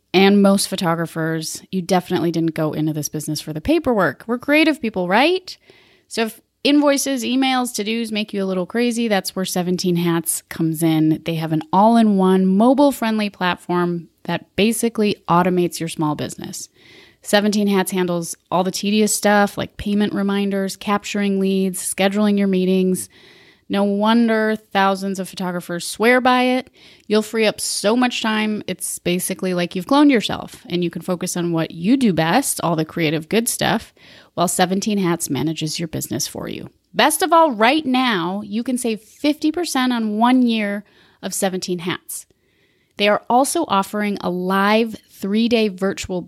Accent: American